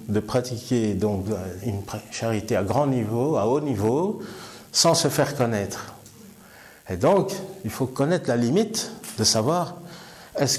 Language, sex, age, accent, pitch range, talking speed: French, male, 50-69, French, 105-140 Hz, 140 wpm